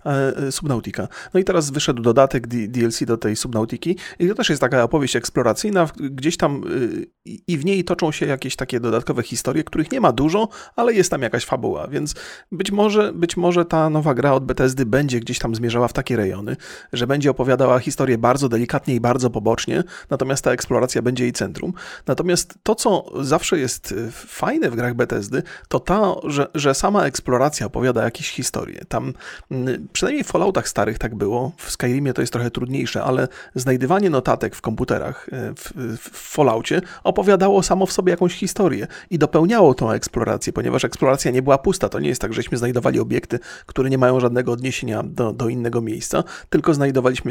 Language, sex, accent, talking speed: Polish, male, native, 180 wpm